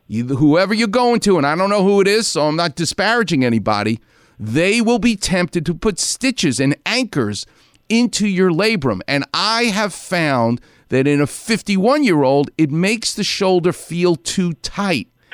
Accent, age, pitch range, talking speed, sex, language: American, 40-59, 130-195 Hz, 170 wpm, male, English